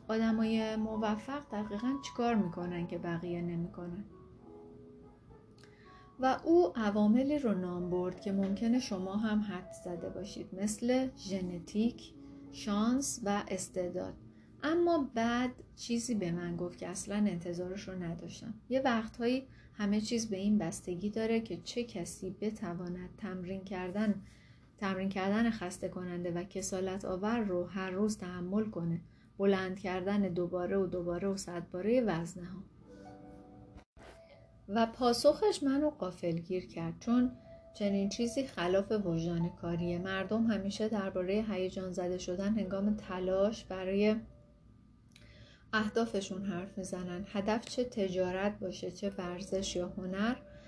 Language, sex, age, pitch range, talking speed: Persian, female, 30-49, 180-220 Hz, 125 wpm